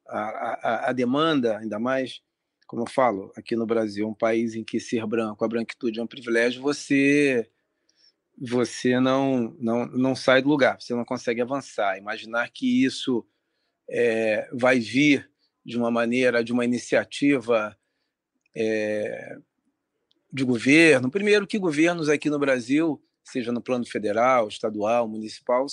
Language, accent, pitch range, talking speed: Portuguese, Brazilian, 115-150 Hz, 145 wpm